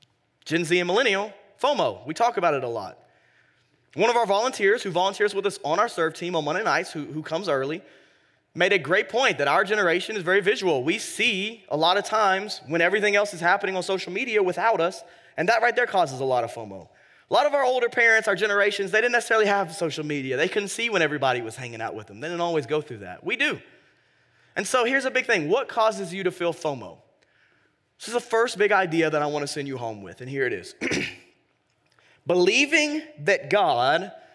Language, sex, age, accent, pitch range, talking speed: English, male, 20-39, American, 130-205 Hz, 225 wpm